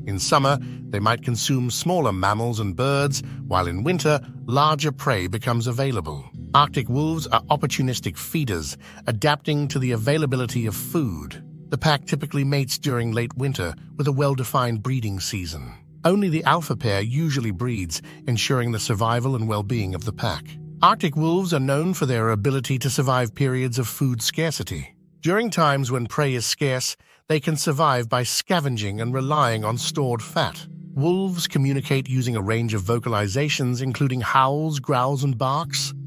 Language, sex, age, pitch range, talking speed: English, male, 50-69, 120-150 Hz, 155 wpm